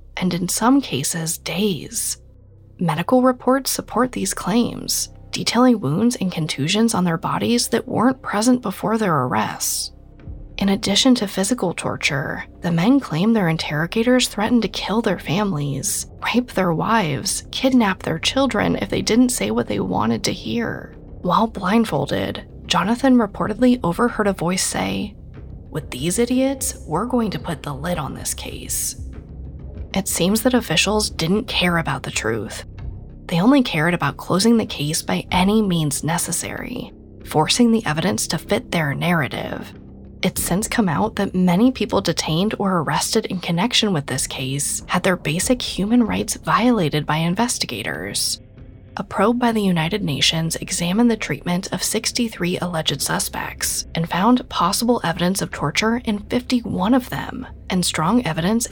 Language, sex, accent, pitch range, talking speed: English, female, American, 150-225 Hz, 150 wpm